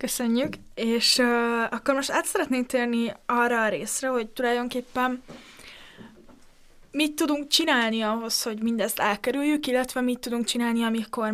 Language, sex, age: English, female, 20-39